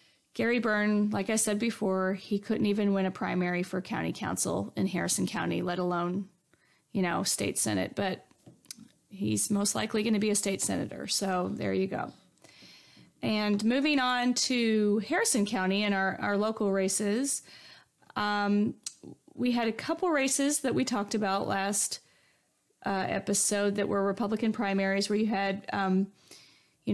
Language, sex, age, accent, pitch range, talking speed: English, female, 30-49, American, 195-230 Hz, 160 wpm